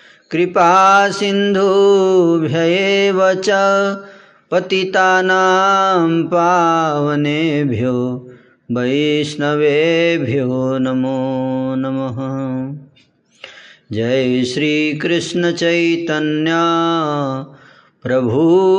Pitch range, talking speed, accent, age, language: 140-190 Hz, 40 wpm, native, 30-49, Hindi